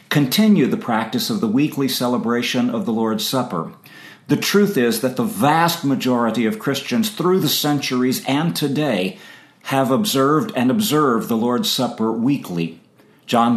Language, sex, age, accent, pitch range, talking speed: English, male, 50-69, American, 125-175 Hz, 150 wpm